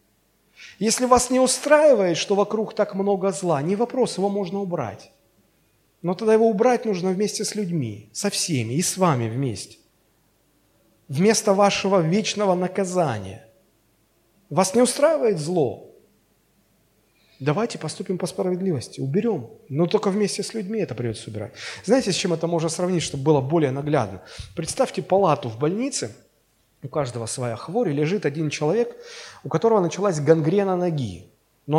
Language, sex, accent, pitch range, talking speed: Russian, male, native, 145-205 Hz, 145 wpm